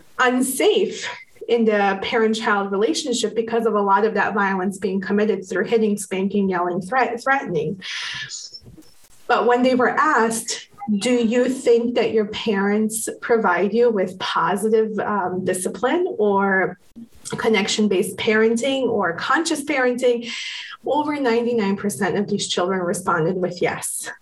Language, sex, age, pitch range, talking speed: English, female, 20-39, 200-240 Hz, 125 wpm